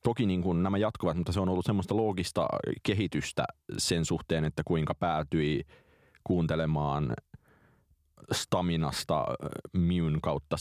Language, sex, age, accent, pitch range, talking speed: Finnish, male, 30-49, native, 80-95 Hz, 115 wpm